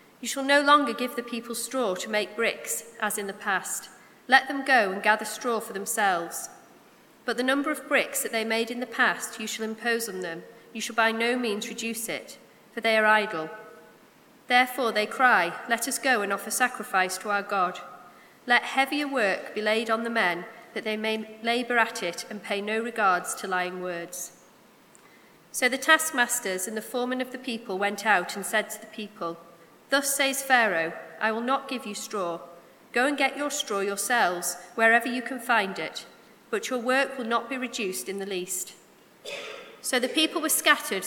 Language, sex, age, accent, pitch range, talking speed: English, female, 40-59, British, 205-255 Hz, 195 wpm